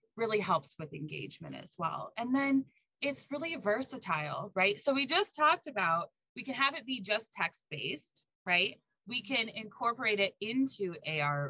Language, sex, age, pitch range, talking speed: English, female, 20-39, 160-235 Hz, 160 wpm